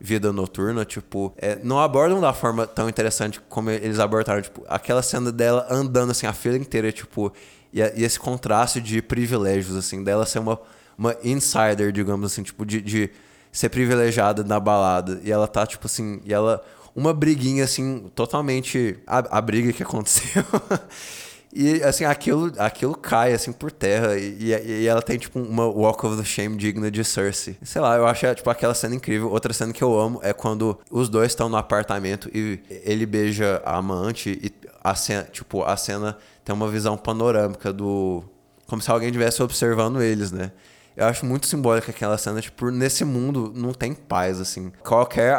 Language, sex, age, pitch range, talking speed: Portuguese, male, 20-39, 105-125 Hz, 180 wpm